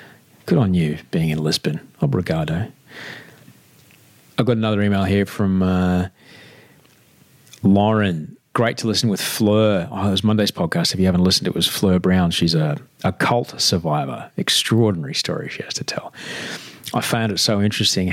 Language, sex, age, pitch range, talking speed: English, male, 30-49, 90-110 Hz, 160 wpm